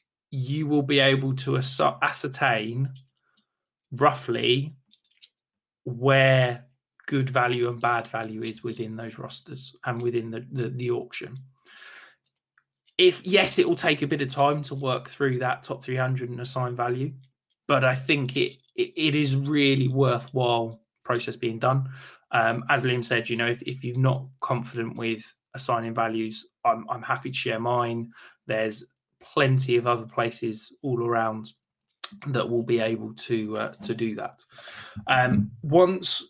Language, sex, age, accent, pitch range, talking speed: English, male, 20-39, British, 115-135 Hz, 150 wpm